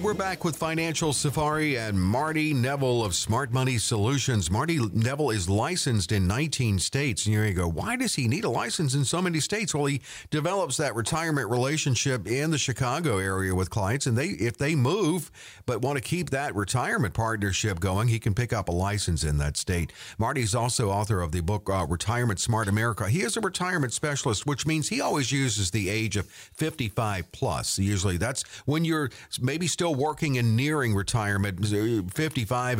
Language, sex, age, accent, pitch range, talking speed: English, male, 50-69, American, 105-140 Hz, 190 wpm